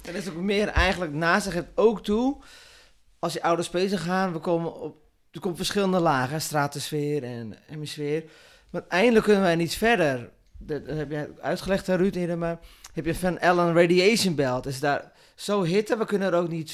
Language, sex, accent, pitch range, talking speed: Dutch, male, Dutch, 145-180 Hz, 190 wpm